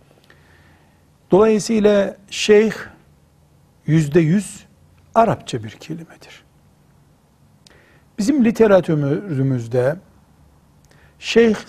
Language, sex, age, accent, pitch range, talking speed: Turkish, male, 60-79, native, 135-200 Hz, 50 wpm